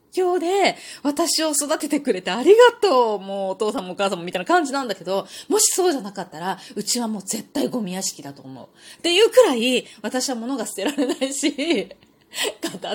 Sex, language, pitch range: female, Japanese, 205-310 Hz